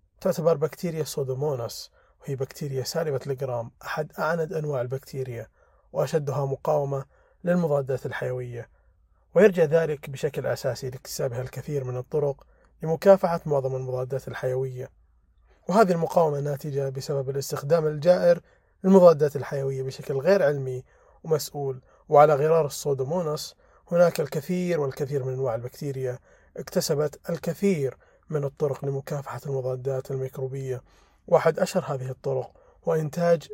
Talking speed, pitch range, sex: 110 wpm, 130-160 Hz, male